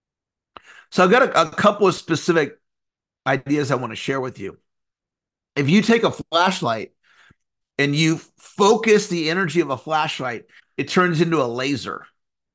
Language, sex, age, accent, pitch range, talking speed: English, male, 50-69, American, 145-190 Hz, 160 wpm